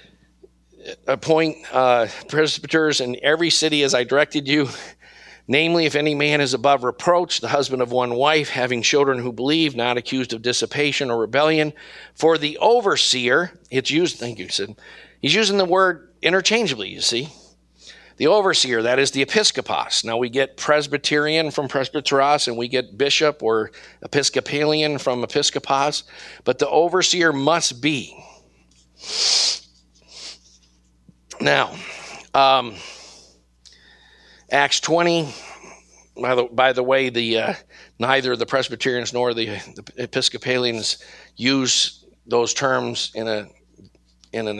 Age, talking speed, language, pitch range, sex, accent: 50-69, 130 wpm, English, 120-150 Hz, male, American